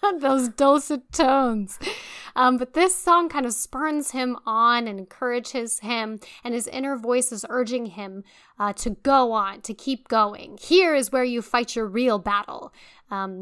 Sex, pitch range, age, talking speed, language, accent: female, 210-250 Hz, 10-29, 170 wpm, English, American